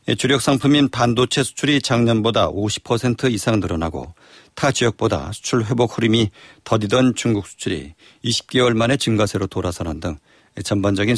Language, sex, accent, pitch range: Korean, male, native, 100-130 Hz